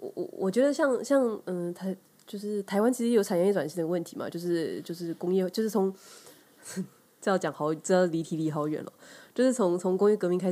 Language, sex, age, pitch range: Chinese, female, 20-39, 165-200 Hz